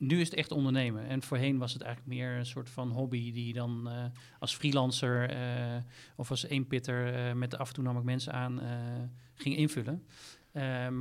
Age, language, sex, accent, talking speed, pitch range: 40-59, Dutch, male, Dutch, 205 wpm, 125-145 Hz